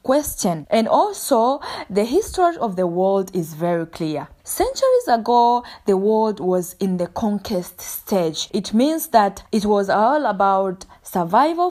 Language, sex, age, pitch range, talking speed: English, female, 20-39, 180-235 Hz, 145 wpm